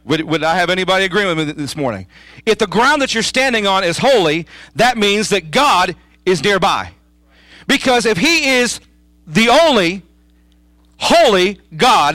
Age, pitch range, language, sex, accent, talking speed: 40-59, 165-235 Hz, English, male, American, 165 wpm